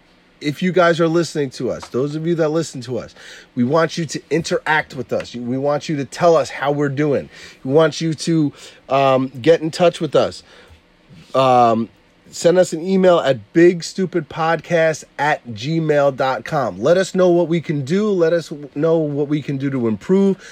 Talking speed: 195 wpm